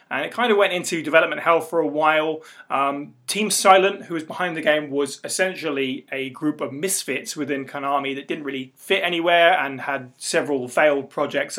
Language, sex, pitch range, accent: English, male, 135-170 Hz, British